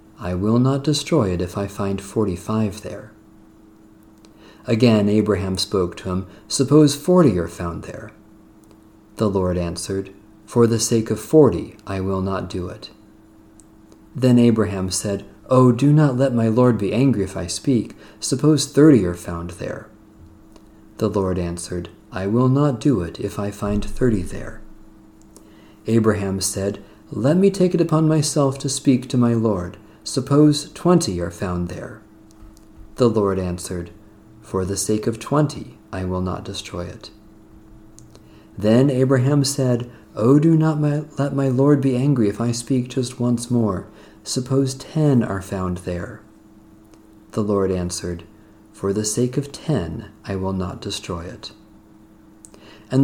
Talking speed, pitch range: 150 wpm, 100-125 Hz